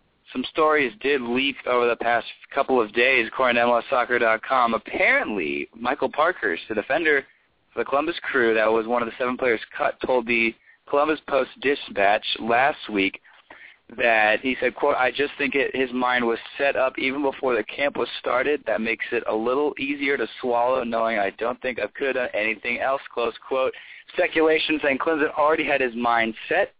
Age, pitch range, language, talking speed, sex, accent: 20-39, 115-145 Hz, English, 185 wpm, male, American